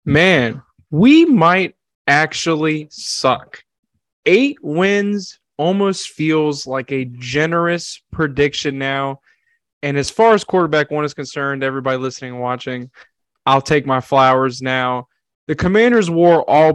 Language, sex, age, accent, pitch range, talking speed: English, male, 20-39, American, 135-155 Hz, 125 wpm